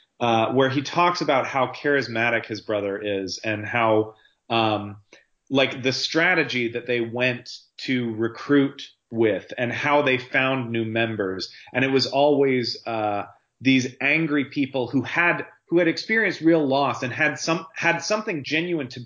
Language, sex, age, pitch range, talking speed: English, male, 30-49, 115-145 Hz, 155 wpm